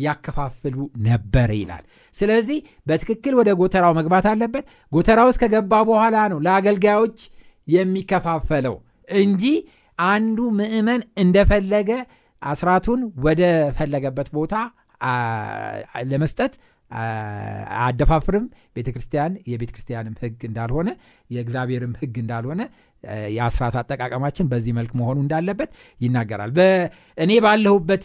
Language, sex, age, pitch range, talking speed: Amharic, male, 60-79, 125-205 Hz, 70 wpm